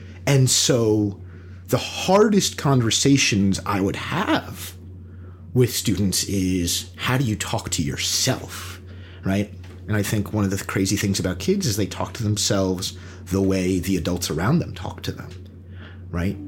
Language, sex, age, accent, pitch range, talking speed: English, male, 30-49, American, 90-105 Hz, 155 wpm